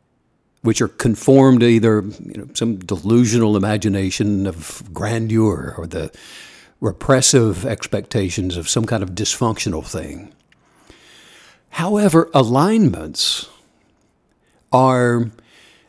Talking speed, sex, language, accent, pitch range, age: 85 wpm, male, English, American, 110-150 Hz, 60-79